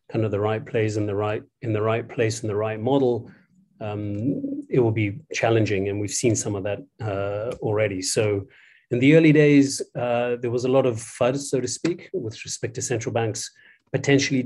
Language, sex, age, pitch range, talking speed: English, male, 30-49, 110-135 Hz, 210 wpm